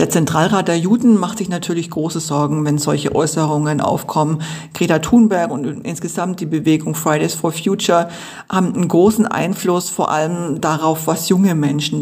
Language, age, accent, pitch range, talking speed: German, 40-59, German, 165-195 Hz, 160 wpm